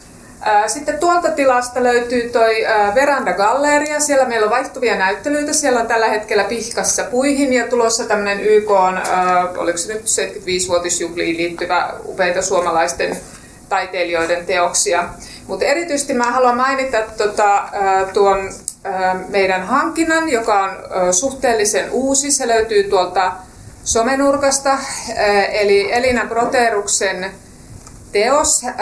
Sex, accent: female, native